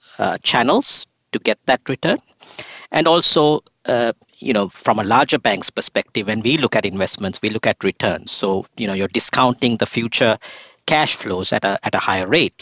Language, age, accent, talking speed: English, 50-69, Indian, 190 wpm